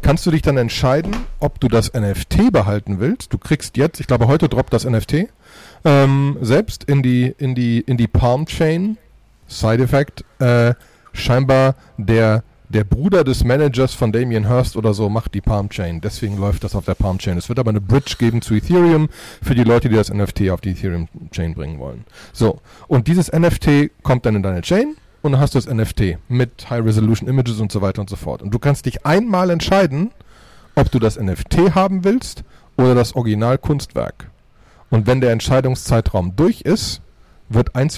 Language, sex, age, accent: German, male, 30-49, German